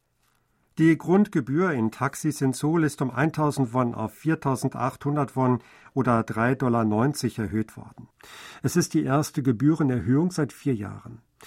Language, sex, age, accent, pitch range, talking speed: German, male, 50-69, German, 120-145 Hz, 135 wpm